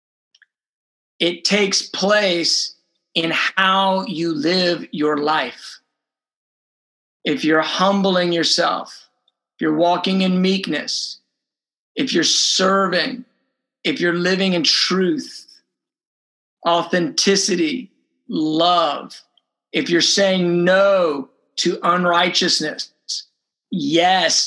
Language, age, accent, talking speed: English, 50-69, American, 85 wpm